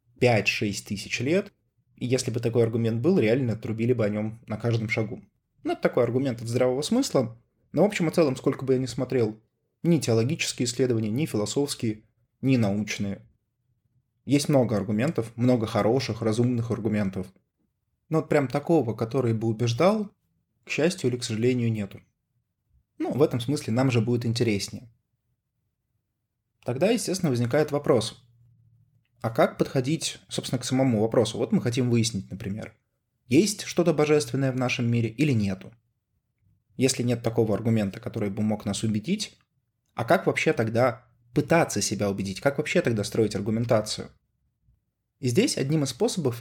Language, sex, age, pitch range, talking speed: Russian, male, 20-39, 110-135 Hz, 155 wpm